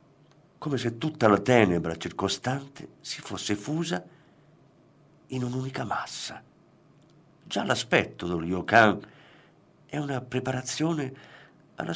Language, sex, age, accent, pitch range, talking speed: Italian, male, 50-69, native, 110-155 Hz, 100 wpm